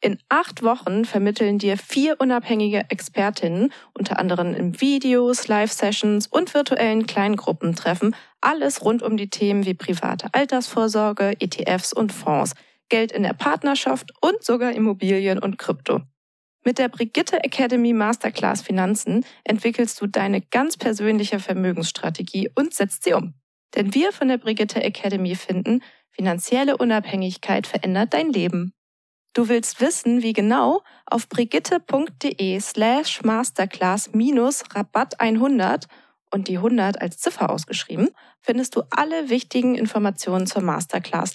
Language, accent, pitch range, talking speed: German, German, 195-250 Hz, 130 wpm